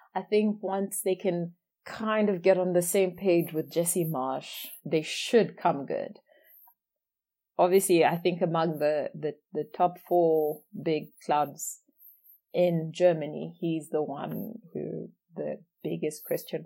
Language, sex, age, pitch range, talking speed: English, female, 30-49, 155-205 Hz, 140 wpm